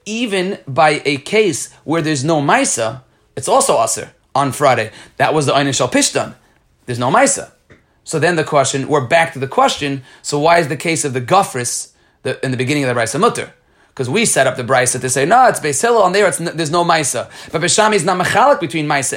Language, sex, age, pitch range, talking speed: Hebrew, male, 30-49, 135-180 Hz, 215 wpm